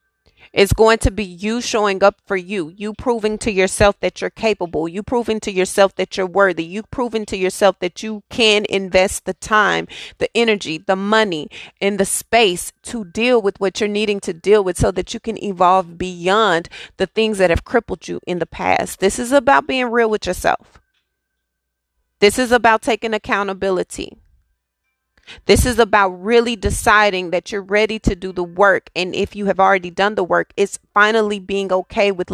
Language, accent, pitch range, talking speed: English, American, 185-215 Hz, 185 wpm